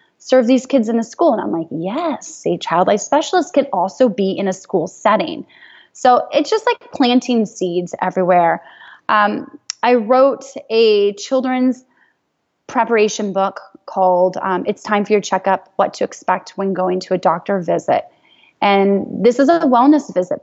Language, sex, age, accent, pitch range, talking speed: English, female, 20-39, American, 195-280 Hz, 165 wpm